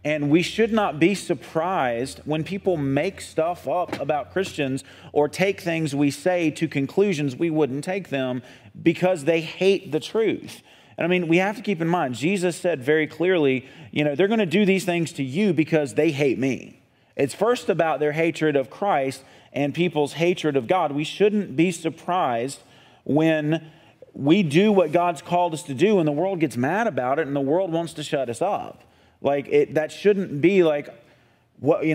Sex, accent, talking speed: male, American, 190 wpm